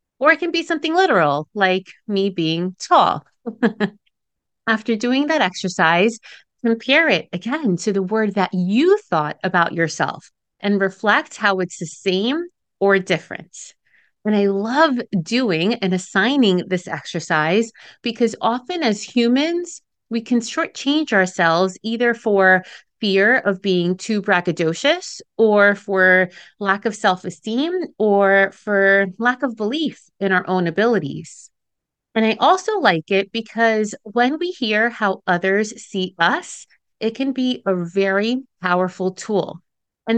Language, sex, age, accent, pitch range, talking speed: English, female, 30-49, American, 185-250 Hz, 135 wpm